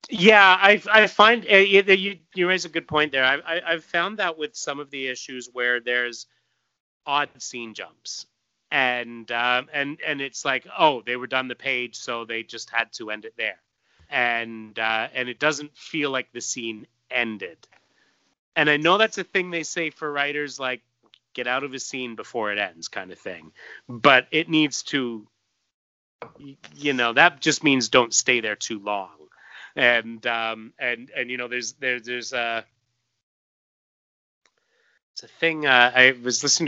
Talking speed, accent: 180 wpm, American